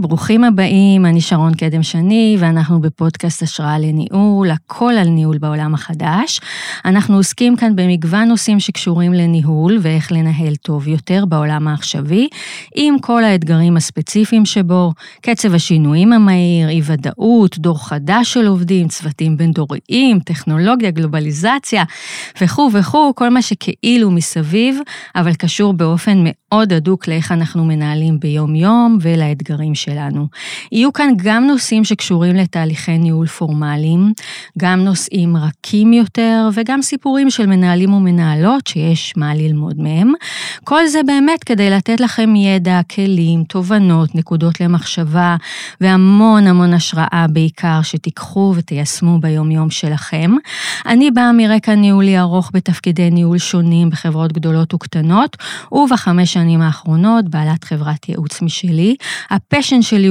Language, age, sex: Hebrew, 30-49, female